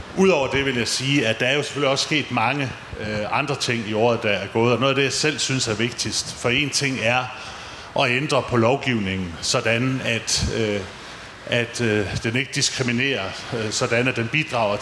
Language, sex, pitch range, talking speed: Danish, male, 110-135 Hz, 190 wpm